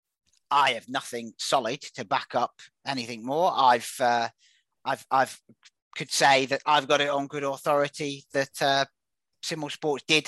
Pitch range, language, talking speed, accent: 120-150 Hz, English, 160 wpm, British